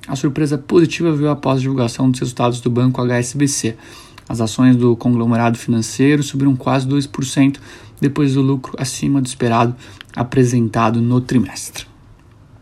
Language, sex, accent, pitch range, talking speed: Portuguese, male, Brazilian, 120-140 Hz, 140 wpm